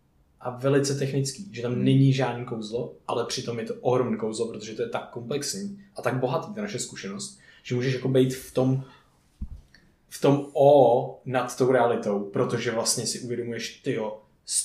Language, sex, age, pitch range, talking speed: Czech, male, 20-39, 130-155 Hz, 170 wpm